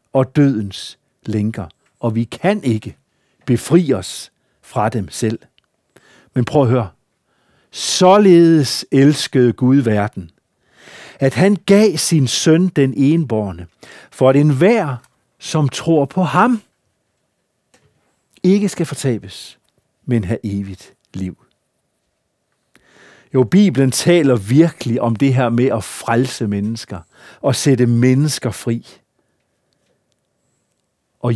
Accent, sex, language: native, male, Danish